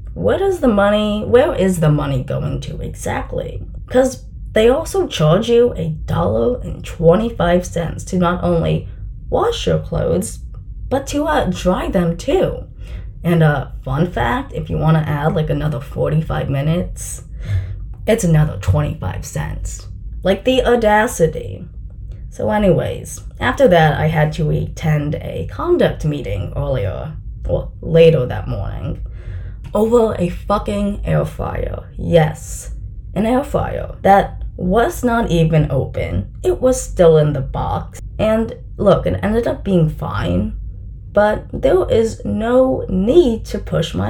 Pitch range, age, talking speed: 125-205 Hz, 20-39, 145 wpm